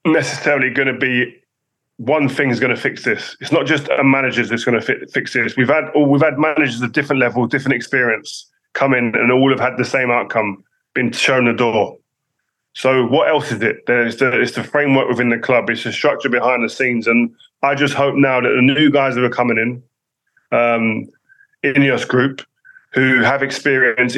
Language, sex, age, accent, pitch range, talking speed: English, male, 20-39, British, 120-135 Hz, 205 wpm